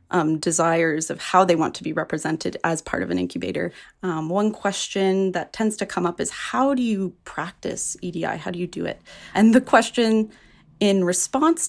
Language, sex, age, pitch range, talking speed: English, female, 20-39, 175-210 Hz, 195 wpm